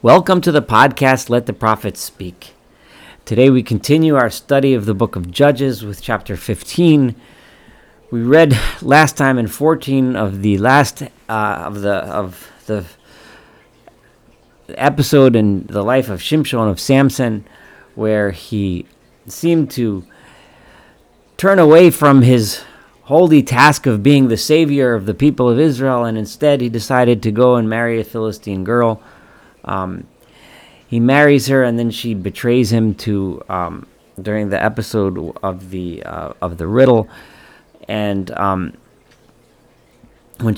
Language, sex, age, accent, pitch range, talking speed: English, male, 40-59, American, 100-130 Hz, 140 wpm